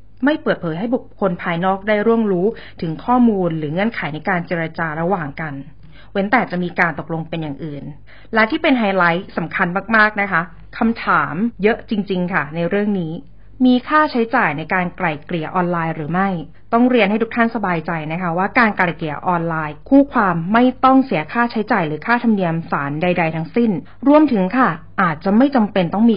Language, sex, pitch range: English, female, 170-230 Hz